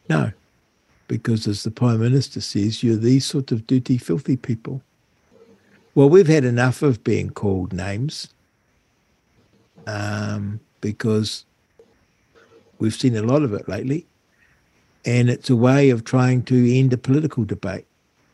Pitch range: 105-135 Hz